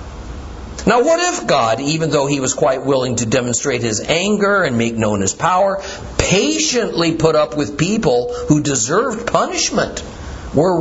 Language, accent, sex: English, American, male